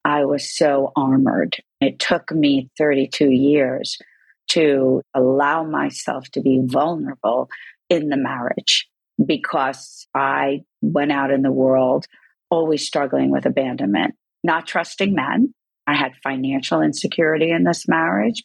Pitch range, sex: 135-165 Hz, female